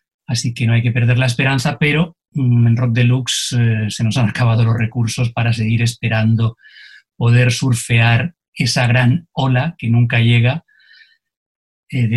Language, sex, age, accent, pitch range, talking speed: Spanish, male, 30-49, Spanish, 115-125 Hz, 160 wpm